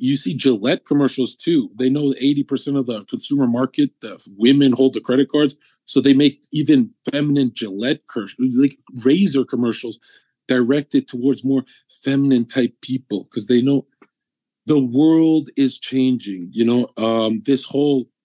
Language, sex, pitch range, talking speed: English, male, 125-160 Hz, 150 wpm